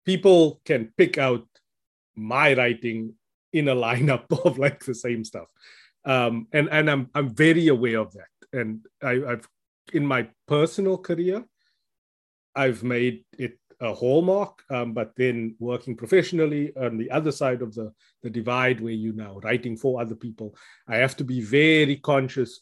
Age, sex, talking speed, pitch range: 30-49, male, 160 wpm, 115-150 Hz